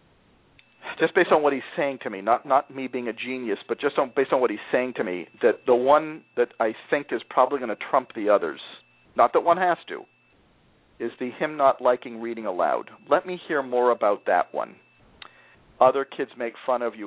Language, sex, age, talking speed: English, male, 40-59, 215 wpm